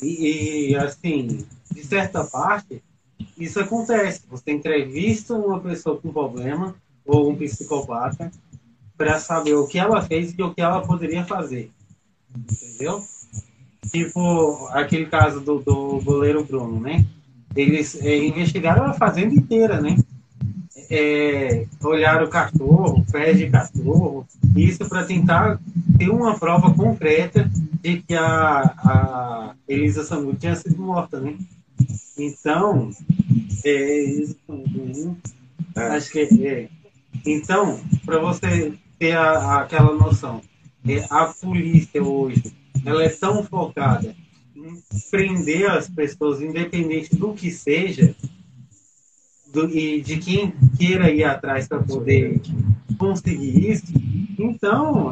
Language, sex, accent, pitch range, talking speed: Portuguese, male, Brazilian, 135-170 Hz, 120 wpm